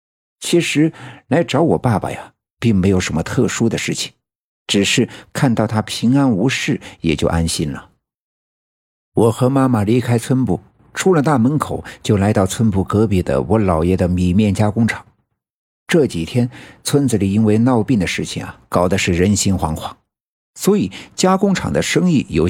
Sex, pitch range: male, 90-120 Hz